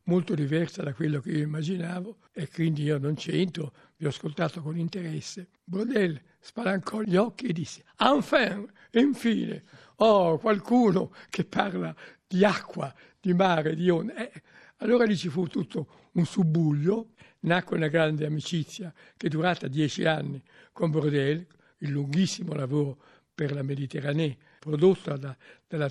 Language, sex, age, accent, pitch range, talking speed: Italian, male, 60-79, native, 150-195 Hz, 150 wpm